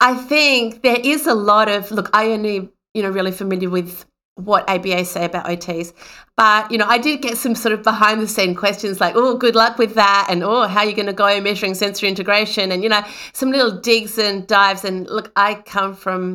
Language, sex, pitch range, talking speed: English, female, 185-210 Hz, 230 wpm